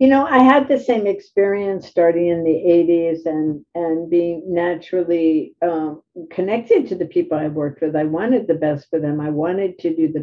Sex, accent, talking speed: female, American, 200 wpm